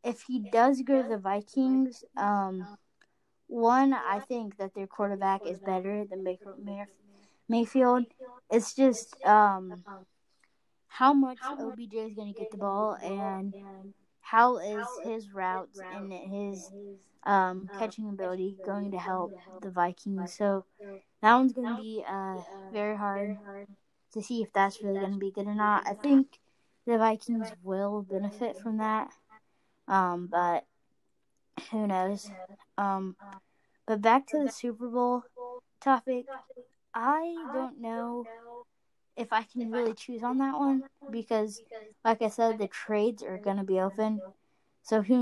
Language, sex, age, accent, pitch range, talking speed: English, female, 20-39, American, 195-230 Hz, 145 wpm